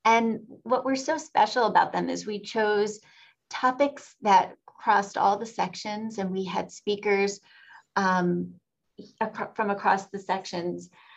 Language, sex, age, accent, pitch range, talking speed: English, female, 30-49, American, 175-215 Hz, 135 wpm